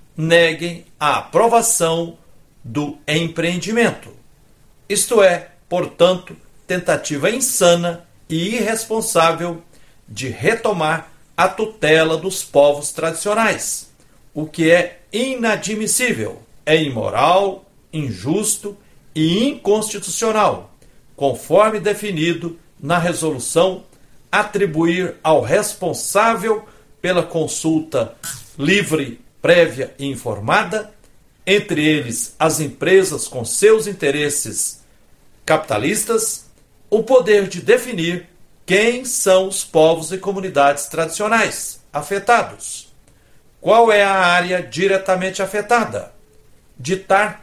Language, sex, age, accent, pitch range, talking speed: Portuguese, male, 60-79, Brazilian, 155-210 Hz, 85 wpm